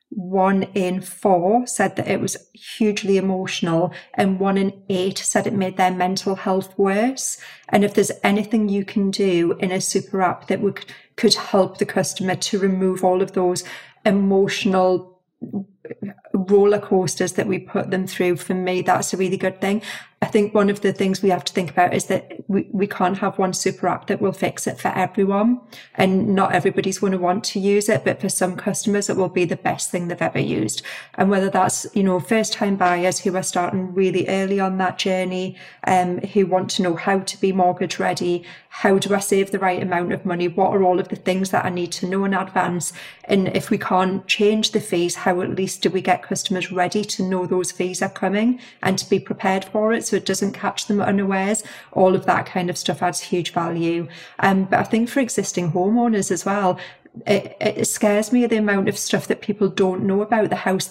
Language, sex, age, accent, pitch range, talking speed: English, female, 30-49, British, 185-205 Hz, 215 wpm